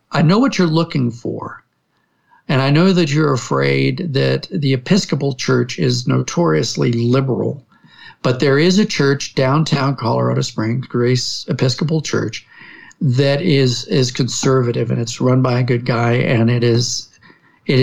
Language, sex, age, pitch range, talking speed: English, male, 50-69, 120-145 Hz, 150 wpm